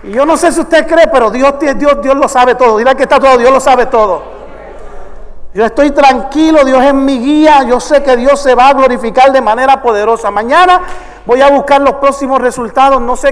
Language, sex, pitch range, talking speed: English, male, 230-280 Hz, 220 wpm